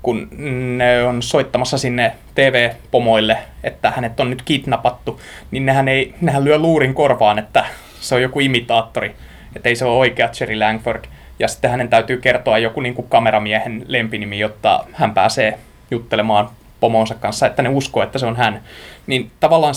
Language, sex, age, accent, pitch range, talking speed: Finnish, male, 20-39, native, 115-145 Hz, 165 wpm